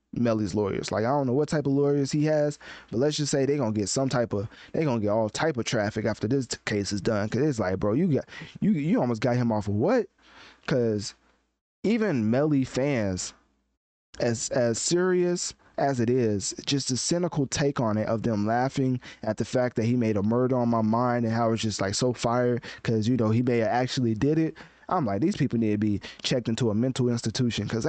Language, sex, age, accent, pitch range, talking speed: English, male, 20-39, American, 110-145 Hz, 230 wpm